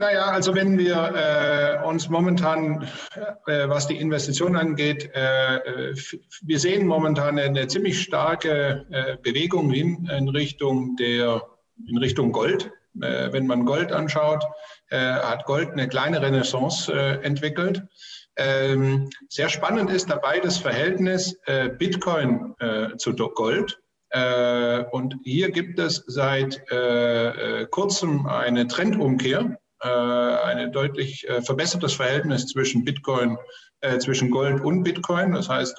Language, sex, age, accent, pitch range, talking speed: German, male, 50-69, German, 130-175 Hz, 130 wpm